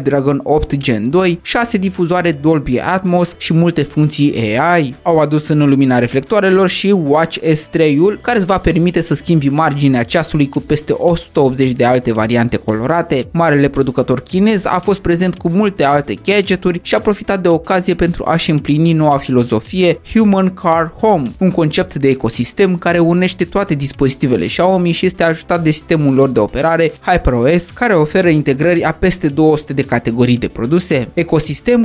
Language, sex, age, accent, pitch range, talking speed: Romanian, male, 20-39, native, 140-175 Hz, 165 wpm